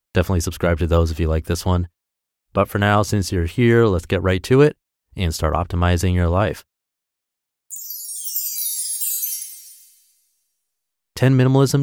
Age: 30-49